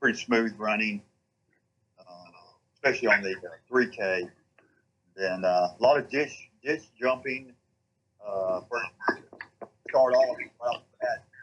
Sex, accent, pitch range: male, American, 95-125 Hz